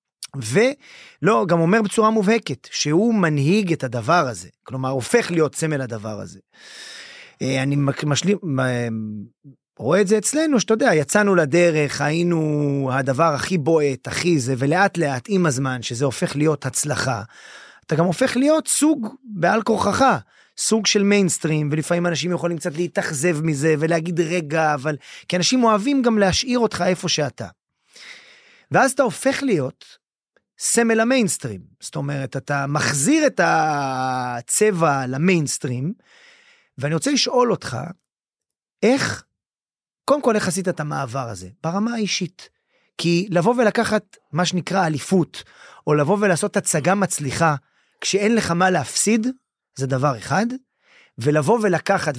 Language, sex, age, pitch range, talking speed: Hebrew, male, 30-49, 145-220 Hz, 125 wpm